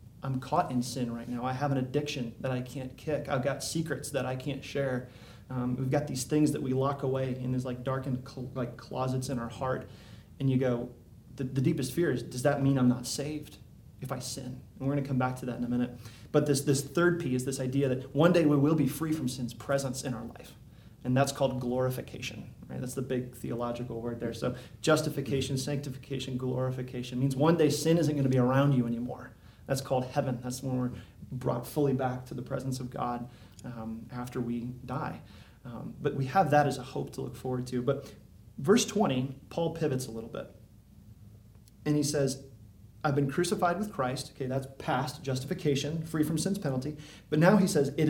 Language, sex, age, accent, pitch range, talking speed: English, male, 30-49, American, 125-145 Hz, 210 wpm